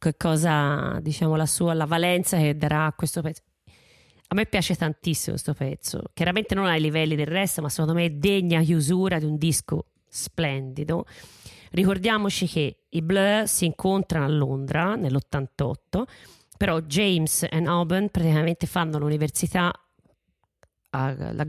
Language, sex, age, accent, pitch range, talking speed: Italian, female, 30-49, native, 150-180 Hz, 145 wpm